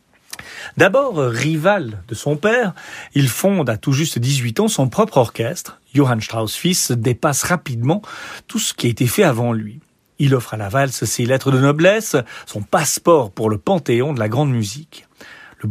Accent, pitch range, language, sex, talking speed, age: French, 120-160 Hz, French, male, 180 wpm, 40-59